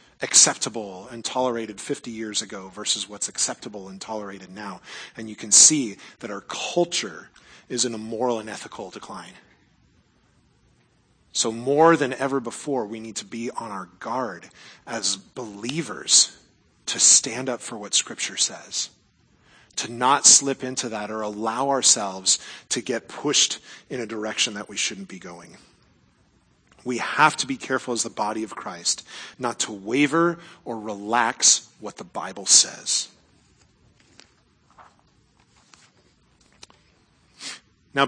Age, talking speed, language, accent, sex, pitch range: 30-49, 135 wpm, English, American, male, 115-155 Hz